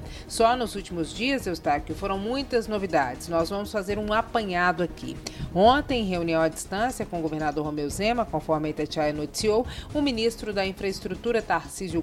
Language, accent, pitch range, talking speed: Portuguese, Brazilian, 180-240 Hz, 165 wpm